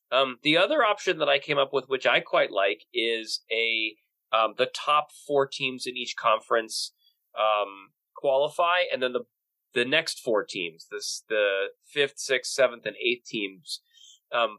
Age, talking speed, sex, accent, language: 30-49, 170 wpm, male, American, English